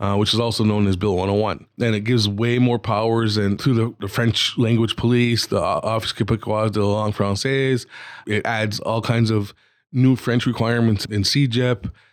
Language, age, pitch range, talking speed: English, 20-39, 105-125 Hz, 190 wpm